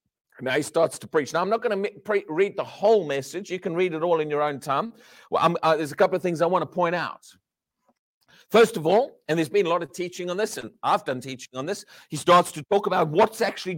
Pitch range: 150-200 Hz